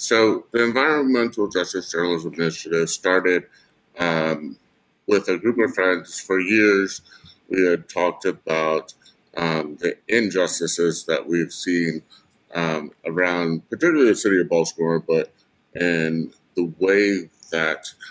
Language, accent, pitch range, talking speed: English, American, 80-95 Hz, 125 wpm